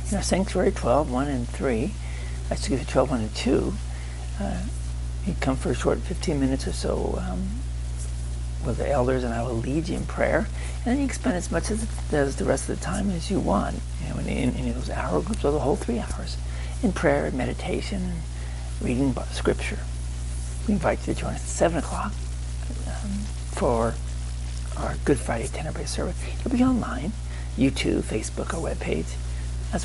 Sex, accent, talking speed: male, American, 190 wpm